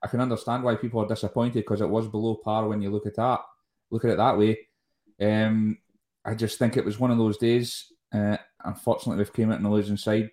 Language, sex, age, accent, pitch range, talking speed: English, male, 20-39, British, 100-115 Hz, 240 wpm